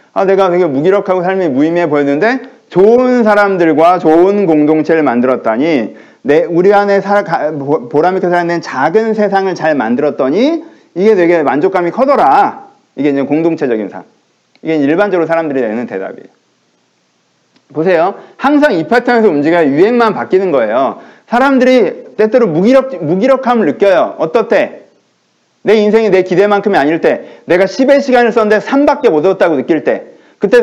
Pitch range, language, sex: 175-245 Hz, Korean, male